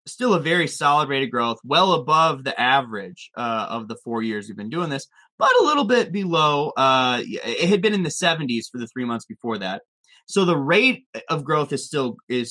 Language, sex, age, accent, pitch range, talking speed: English, male, 20-39, American, 120-180 Hz, 220 wpm